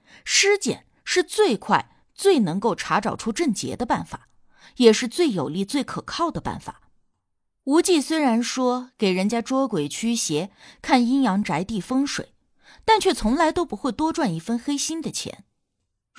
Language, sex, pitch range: Chinese, female, 210-300 Hz